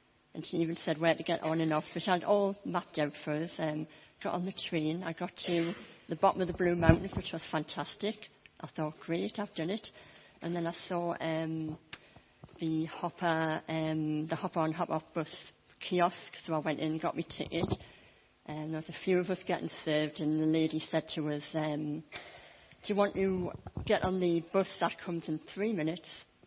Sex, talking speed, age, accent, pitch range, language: female, 205 wpm, 60-79, British, 155-180 Hz, English